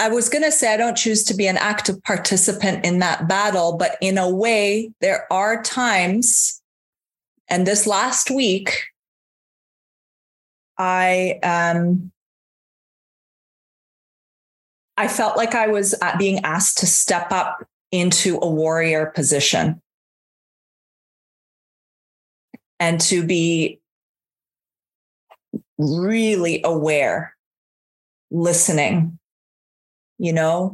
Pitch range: 165-210 Hz